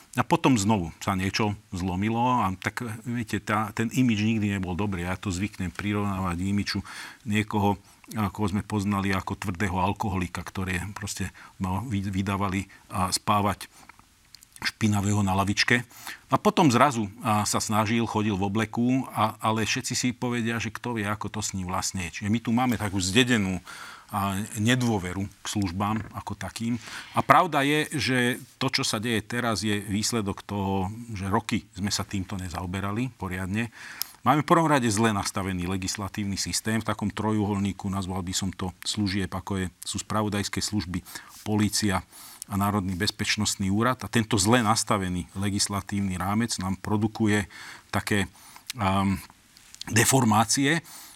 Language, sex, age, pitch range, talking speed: Slovak, male, 40-59, 95-115 Hz, 145 wpm